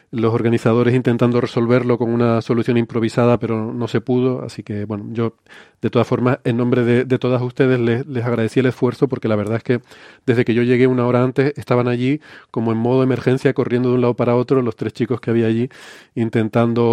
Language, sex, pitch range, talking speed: Spanish, male, 110-125 Hz, 215 wpm